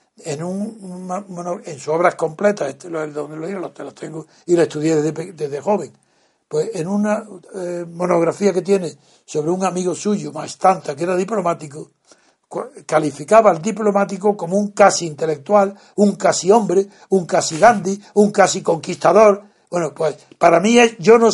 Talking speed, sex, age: 165 wpm, male, 60-79